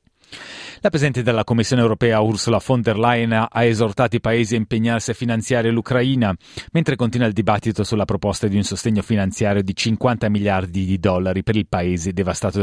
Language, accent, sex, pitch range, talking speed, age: Italian, native, male, 105-125 Hz, 175 wpm, 30-49